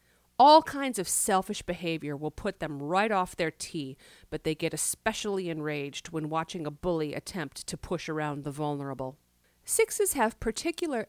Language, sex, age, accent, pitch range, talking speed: English, female, 40-59, American, 155-230 Hz, 160 wpm